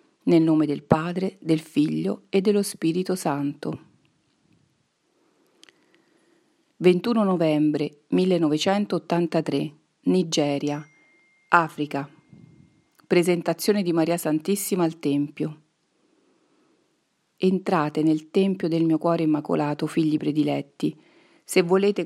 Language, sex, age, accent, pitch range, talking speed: Italian, female, 40-59, native, 155-190 Hz, 85 wpm